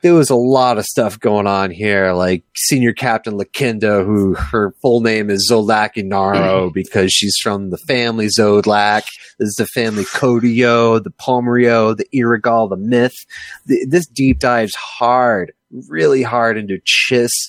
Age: 30-49